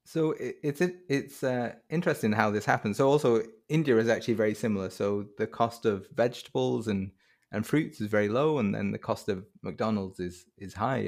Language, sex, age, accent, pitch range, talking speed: English, male, 20-39, British, 105-125 Hz, 190 wpm